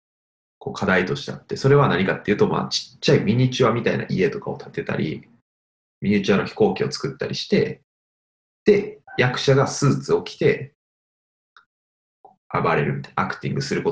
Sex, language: male, Japanese